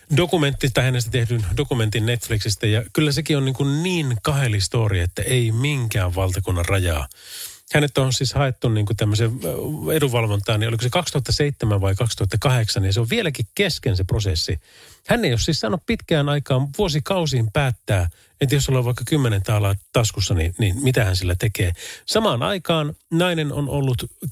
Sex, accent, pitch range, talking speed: male, native, 110-145 Hz, 160 wpm